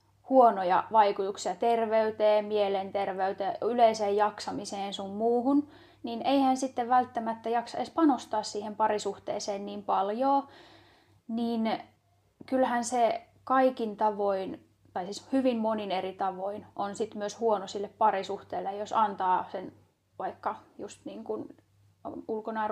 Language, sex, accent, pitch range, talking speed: Finnish, female, native, 195-225 Hz, 115 wpm